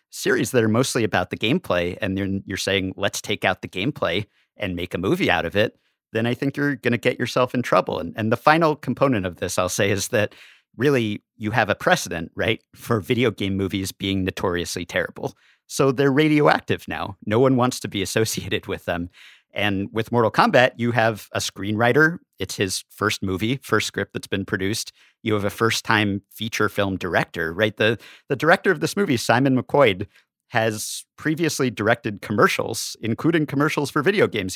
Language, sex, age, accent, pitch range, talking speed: English, male, 50-69, American, 100-130 Hz, 195 wpm